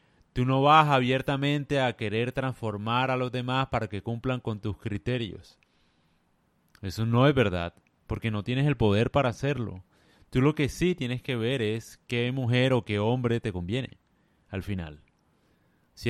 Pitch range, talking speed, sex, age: 105-130 Hz, 170 wpm, male, 30-49